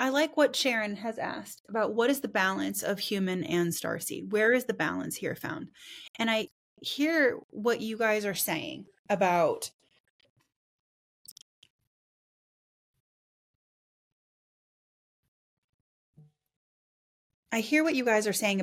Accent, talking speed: American, 120 wpm